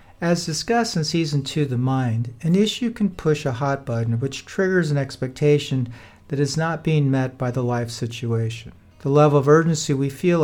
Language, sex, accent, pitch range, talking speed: English, male, American, 125-165 Hz, 190 wpm